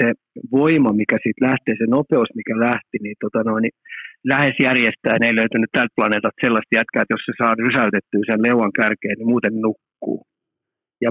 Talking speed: 185 wpm